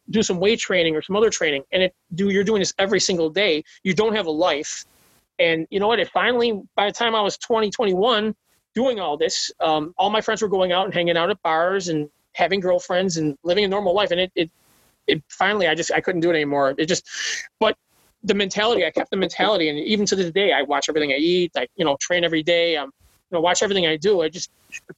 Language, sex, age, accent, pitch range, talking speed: English, male, 30-49, American, 160-200 Hz, 250 wpm